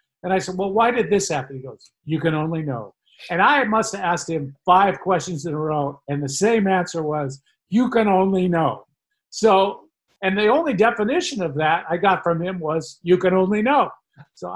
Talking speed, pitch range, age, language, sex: 210 wpm, 130-180 Hz, 50-69, English, male